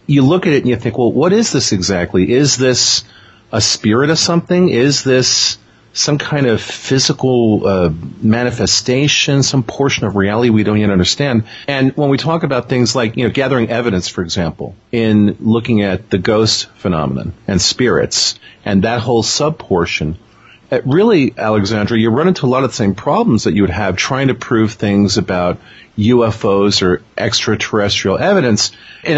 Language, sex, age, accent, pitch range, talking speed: English, male, 40-59, American, 100-130 Hz, 175 wpm